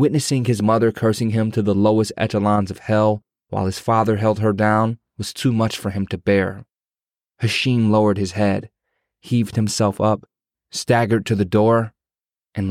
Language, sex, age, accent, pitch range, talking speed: English, male, 20-39, American, 95-115 Hz, 170 wpm